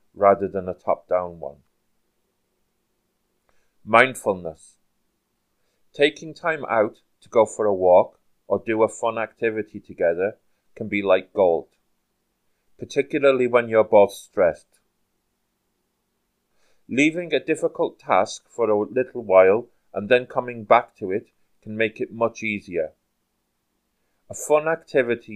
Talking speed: 125 wpm